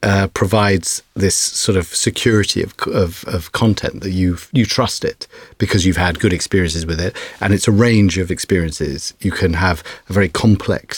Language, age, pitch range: English, 40-59, 90-115 Hz